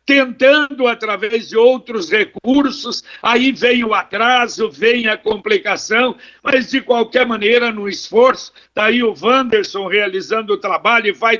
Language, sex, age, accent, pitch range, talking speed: Portuguese, male, 60-79, Brazilian, 210-255 Hz, 135 wpm